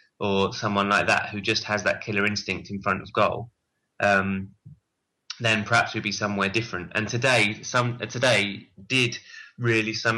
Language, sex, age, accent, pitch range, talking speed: English, male, 20-39, British, 100-120 Hz, 165 wpm